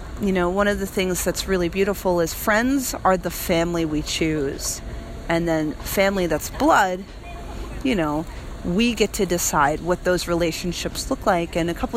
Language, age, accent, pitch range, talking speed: English, 40-59, American, 165-205 Hz, 175 wpm